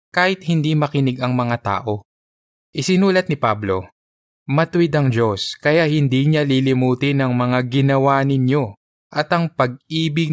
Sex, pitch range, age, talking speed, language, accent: male, 110-140 Hz, 20-39, 135 wpm, Filipino, native